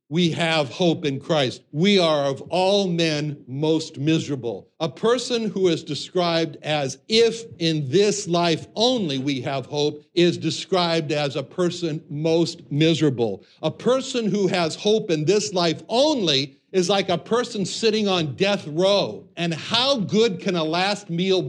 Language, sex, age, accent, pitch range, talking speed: English, male, 60-79, American, 155-205 Hz, 160 wpm